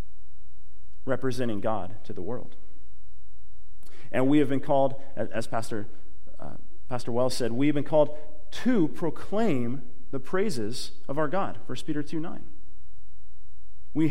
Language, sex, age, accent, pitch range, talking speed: English, male, 30-49, American, 90-145 Hz, 135 wpm